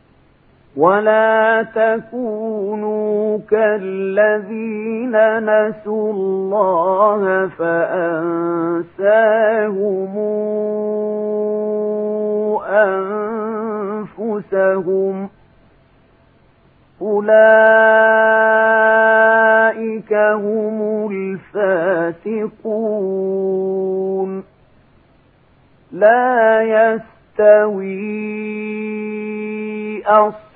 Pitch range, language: 190-215 Hz, Arabic